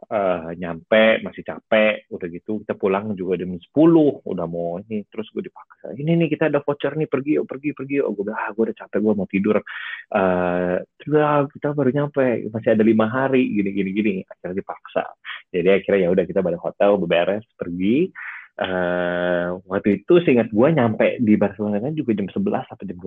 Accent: native